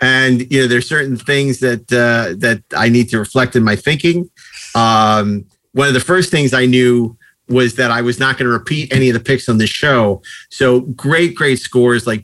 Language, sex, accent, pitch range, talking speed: English, male, American, 110-130 Hz, 215 wpm